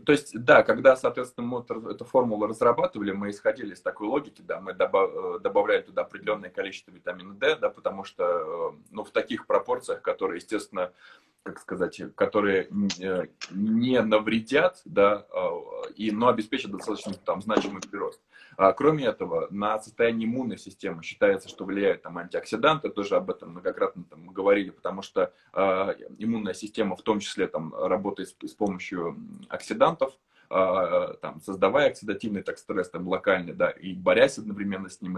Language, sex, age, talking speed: Russian, male, 20-39, 145 wpm